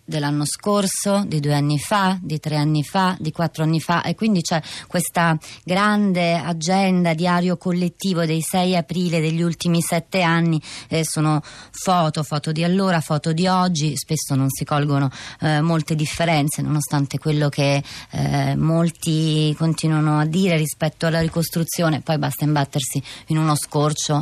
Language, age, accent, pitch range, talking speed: Italian, 30-49, native, 145-170 Hz, 150 wpm